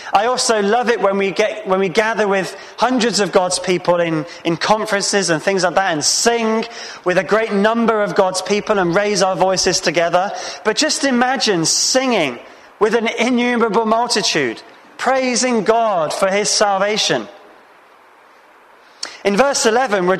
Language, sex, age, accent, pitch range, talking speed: English, male, 20-39, British, 185-230 Hz, 155 wpm